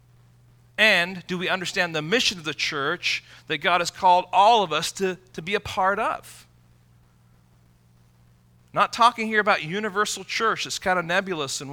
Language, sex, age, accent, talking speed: English, male, 40-59, American, 170 wpm